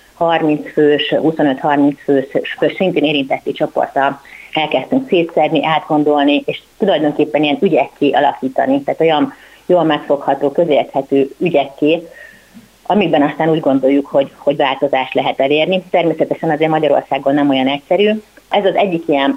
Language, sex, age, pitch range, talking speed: Hungarian, female, 30-49, 140-165 Hz, 130 wpm